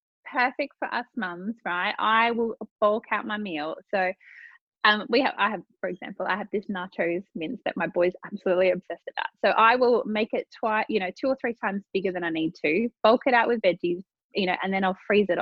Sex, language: female, English